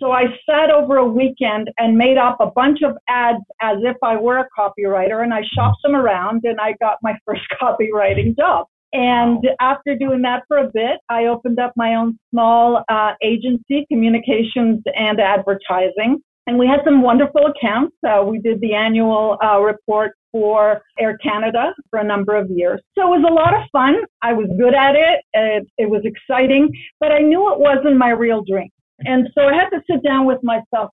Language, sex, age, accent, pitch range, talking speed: English, female, 50-69, American, 210-265 Hz, 200 wpm